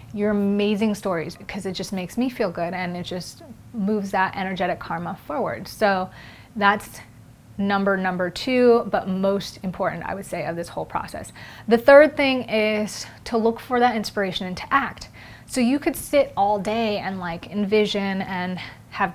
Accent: American